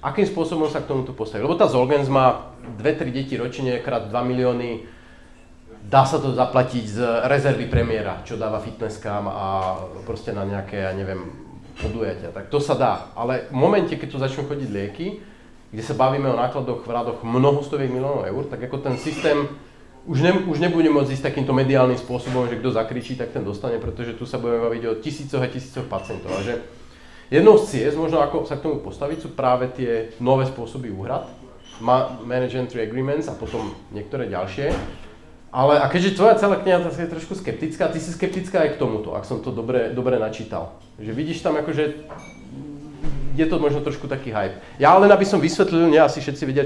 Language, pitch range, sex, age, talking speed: Slovak, 120-150 Hz, male, 30-49, 190 wpm